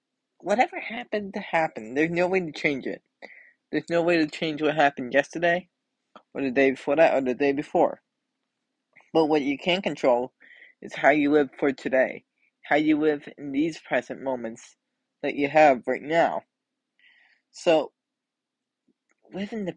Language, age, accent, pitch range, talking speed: English, 20-39, American, 145-200 Hz, 165 wpm